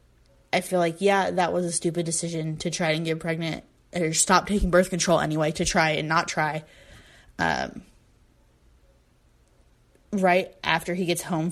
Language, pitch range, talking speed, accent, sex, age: English, 160-190 Hz, 160 wpm, American, female, 20-39